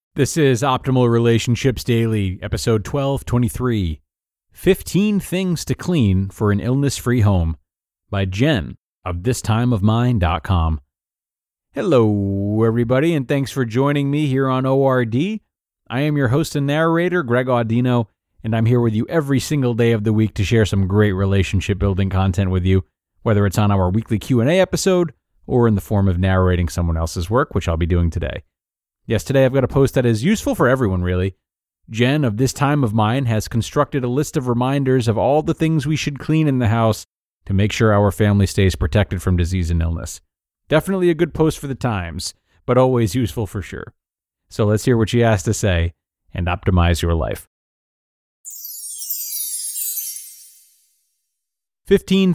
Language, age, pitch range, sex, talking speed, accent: English, 30-49, 95-135 Hz, male, 170 wpm, American